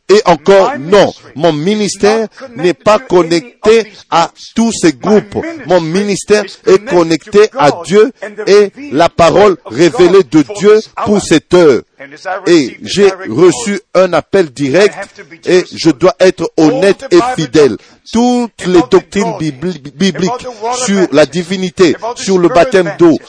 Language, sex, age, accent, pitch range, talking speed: French, male, 50-69, French, 170-215 Hz, 130 wpm